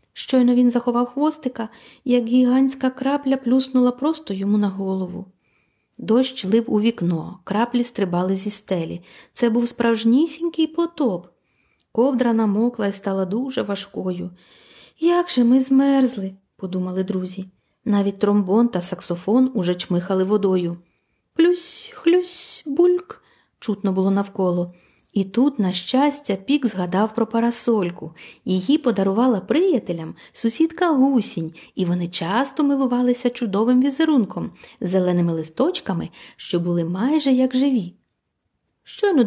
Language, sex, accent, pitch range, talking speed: Ukrainian, female, native, 190-260 Hz, 120 wpm